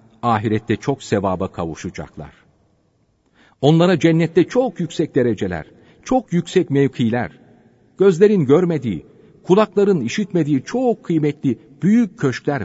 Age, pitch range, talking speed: 50-69, 115-180 Hz, 95 wpm